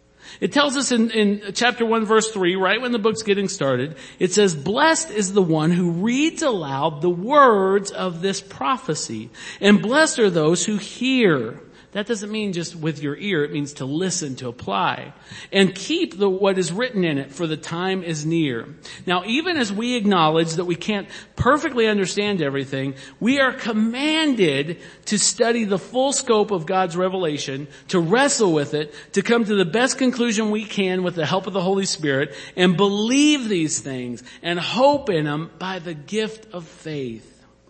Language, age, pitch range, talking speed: English, 50-69, 140-210 Hz, 185 wpm